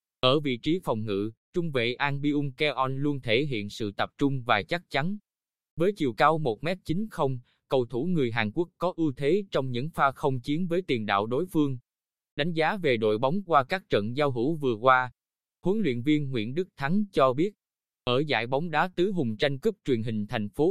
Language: Vietnamese